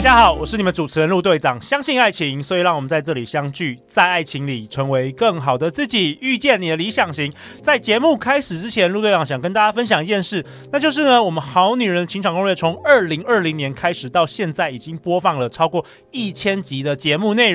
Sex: male